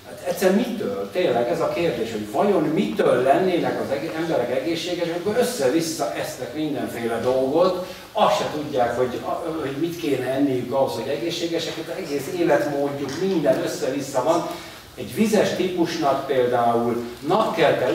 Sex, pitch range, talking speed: male, 130-180 Hz, 130 wpm